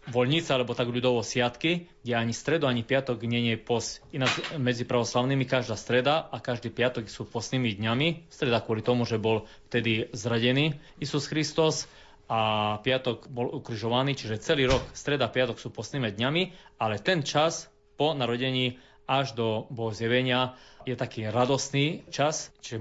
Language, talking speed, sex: Slovak, 155 wpm, male